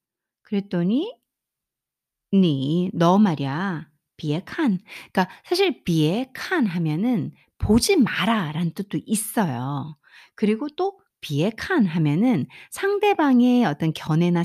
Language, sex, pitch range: Korean, female, 165-265 Hz